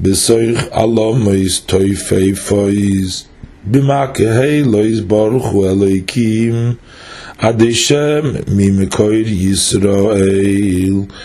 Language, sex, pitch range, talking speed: English, male, 100-120 Hz, 65 wpm